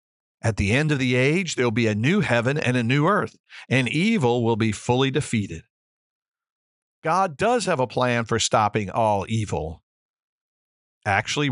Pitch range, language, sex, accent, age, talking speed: 110-150 Hz, English, male, American, 50-69, 160 wpm